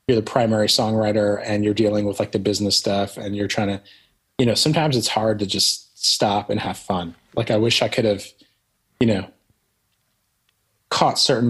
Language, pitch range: English, 105-125 Hz